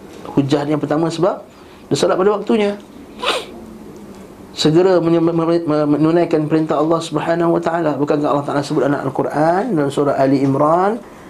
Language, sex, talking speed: Malay, male, 125 wpm